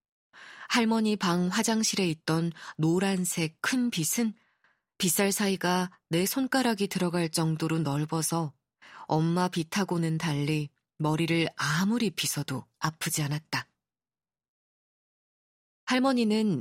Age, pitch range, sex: 20-39, 155-210 Hz, female